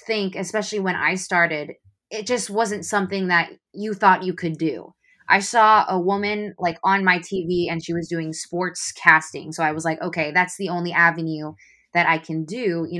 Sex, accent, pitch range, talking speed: female, American, 165-195 Hz, 200 wpm